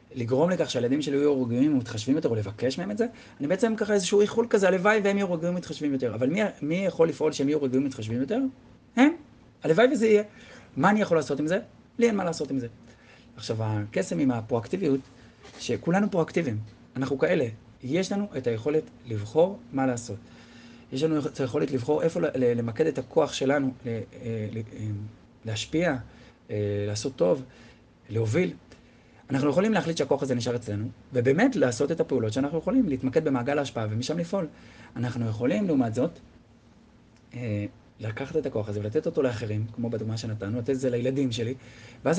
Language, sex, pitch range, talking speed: Hebrew, male, 120-160 Hz, 170 wpm